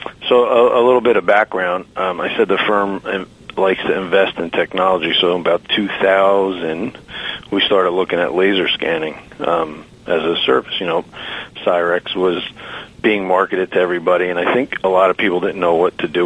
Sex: male